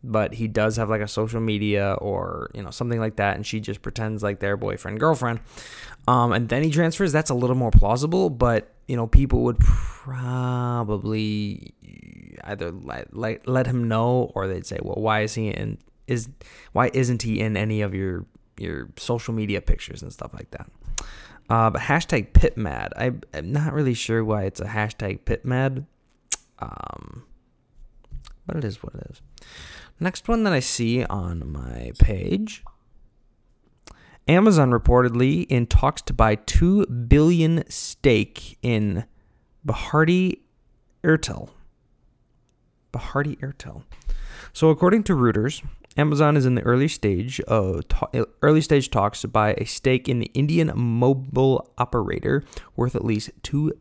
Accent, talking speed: American, 155 wpm